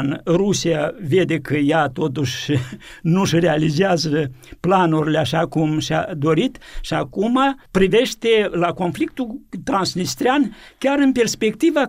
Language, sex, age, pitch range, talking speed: Romanian, male, 60-79, 165-215 Hz, 110 wpm